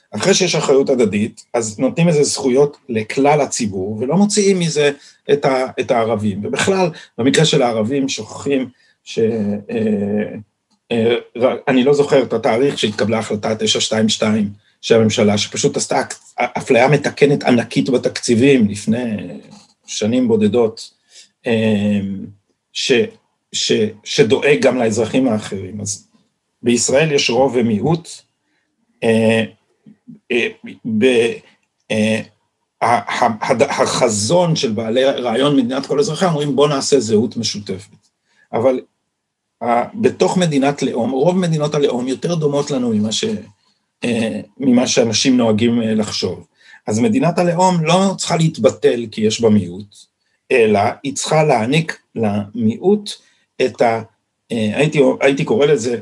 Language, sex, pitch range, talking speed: Hebrew, male, 110-185 Hz, 105 wpm